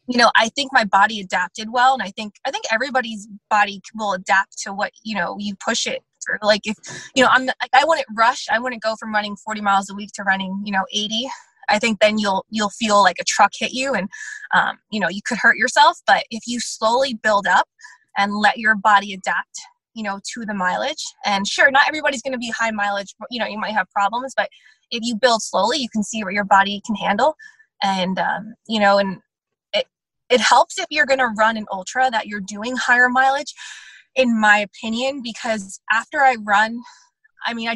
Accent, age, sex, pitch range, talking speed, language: American, 20-39, female, 205-255 Hz, 220 wpm, English